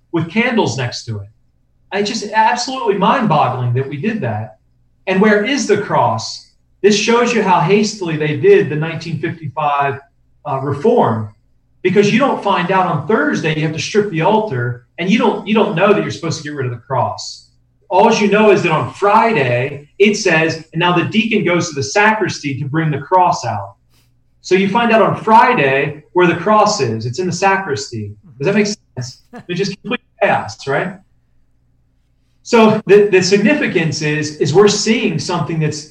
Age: 40-59